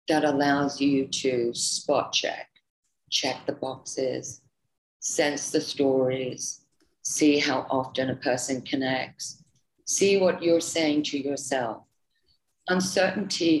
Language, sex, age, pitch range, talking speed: English, female, 50-69, 145-180 Hz, 110 wpm